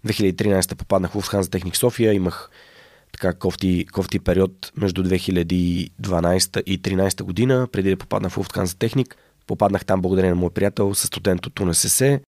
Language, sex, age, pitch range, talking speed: Bulgarian, male, 20-39, 95-115 Hz, 155 wpm